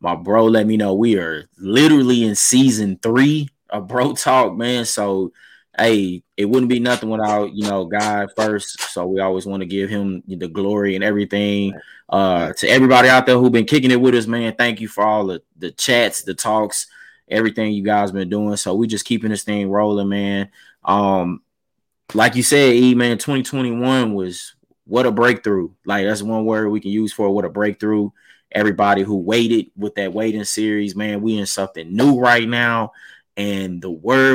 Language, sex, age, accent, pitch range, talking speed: English, male, 20-39, American, 100-125 Hz, 195 wpm